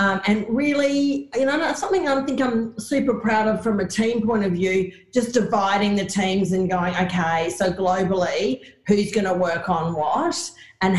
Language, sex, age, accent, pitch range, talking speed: English, female, 40-59, Australian, 175-205 Hz, 190 wpm